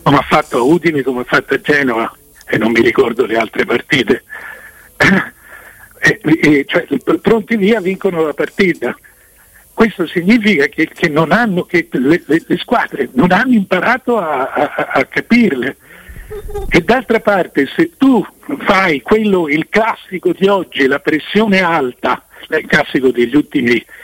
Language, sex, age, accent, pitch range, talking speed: Italian, male, 60-79, native, 140-210 Hz, 150 wpm